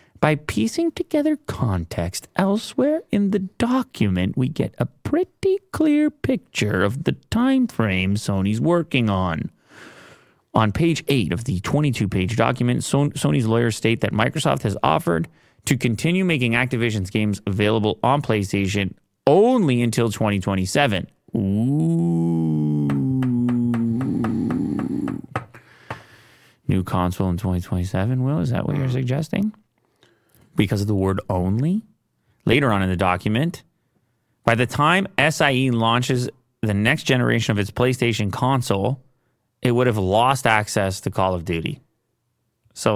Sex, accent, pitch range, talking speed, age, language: male, American, 105-145 Hz, 125 wpm, 30-49, English